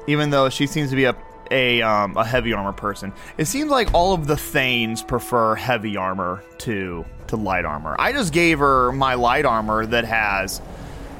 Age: 30-49